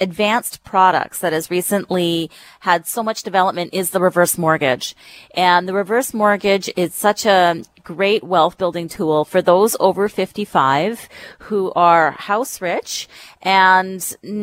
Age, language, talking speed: 30-49, English, 135 wpm